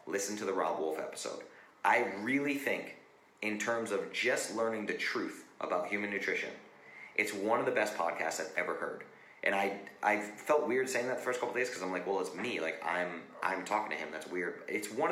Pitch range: 85-120 Hz